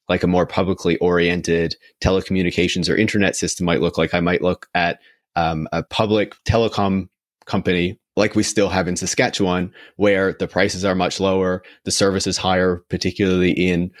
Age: 30-49